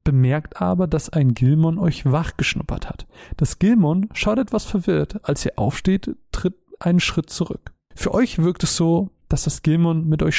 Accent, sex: German, male